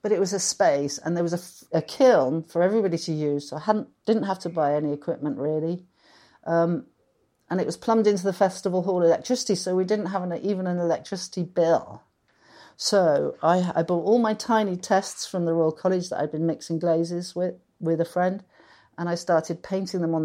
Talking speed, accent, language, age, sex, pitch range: 215 wpm, British, English, 50-69, female, 160-185 Hz